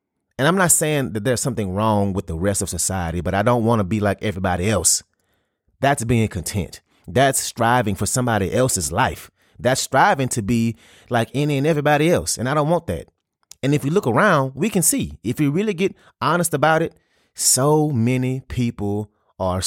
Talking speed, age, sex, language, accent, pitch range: 195 wpm, 30-49, male, English, American, 95-125 Hz